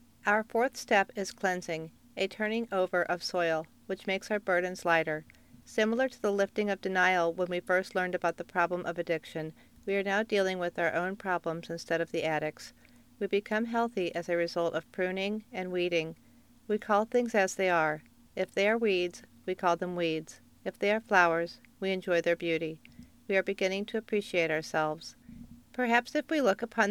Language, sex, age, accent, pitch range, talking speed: English, female, 50-69, American, 170-200 Hz, 190 wpm